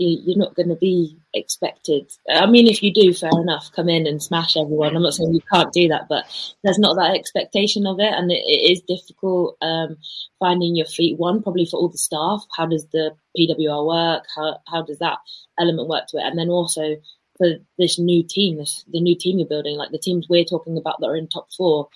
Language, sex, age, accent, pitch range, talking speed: English, female, 20-39, British, 155-175 Hz, 225 wpm